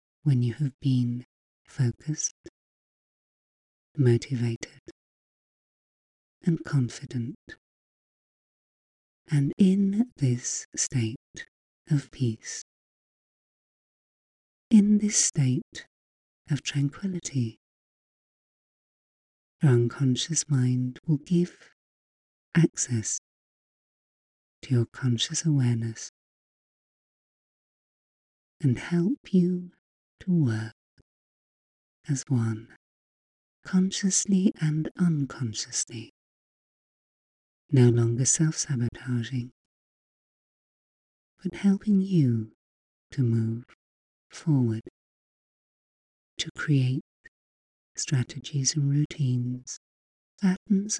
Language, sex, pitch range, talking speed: English, female, 115-160 Hz, 65 wpm